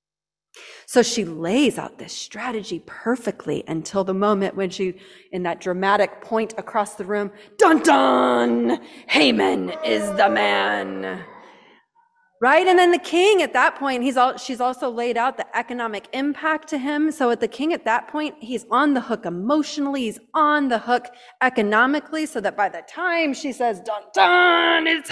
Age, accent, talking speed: 30-49, American, 165 wpm